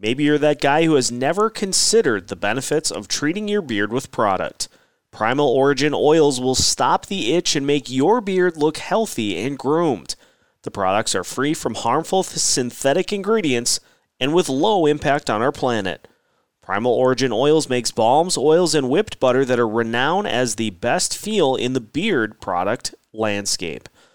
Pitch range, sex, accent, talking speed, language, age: 125-175 Hz, male, American, 165 wpm, English, 30-49